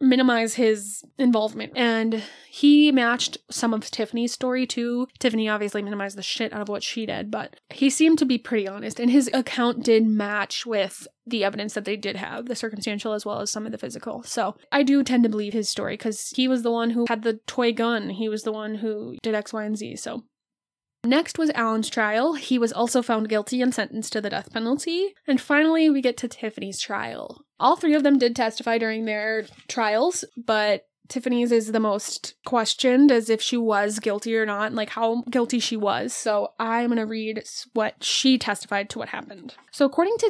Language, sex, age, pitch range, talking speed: English, female, 10-29, 215-255 Hz, 210 wpm